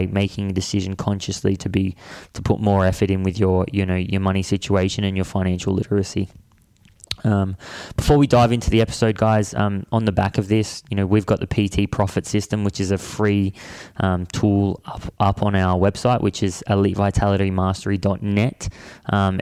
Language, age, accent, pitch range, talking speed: English, 20-39, Australian, 95-105 Hz, 180 wpm